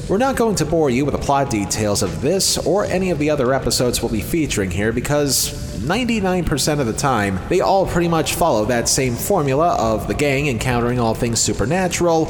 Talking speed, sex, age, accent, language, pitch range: 205 wpm, male, 30-49, American, English, 115-170 Hz